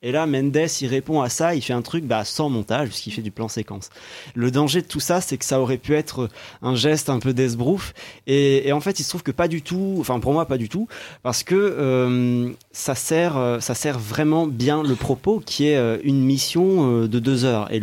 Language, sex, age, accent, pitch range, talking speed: French, male, 30-49, French, 115-145 Hz, 235 wpm